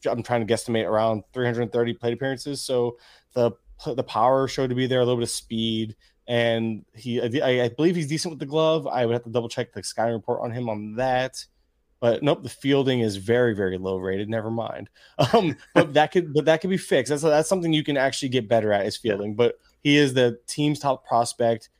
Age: 20-39